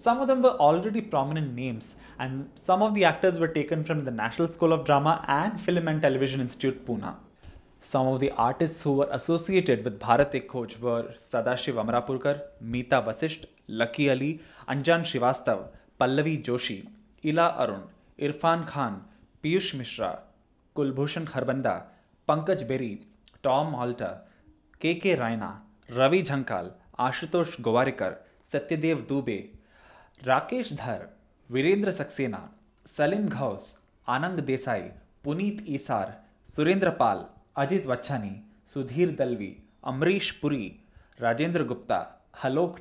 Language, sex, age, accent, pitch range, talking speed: English, male, 20-39, Indian, 125-170 Hz, 120 wpm